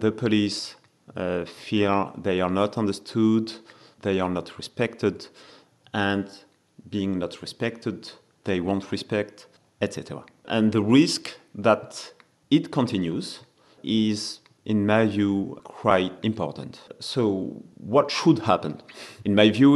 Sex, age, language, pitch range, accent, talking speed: male, 40-59, English, 90-115 Hz, French, 120 wpm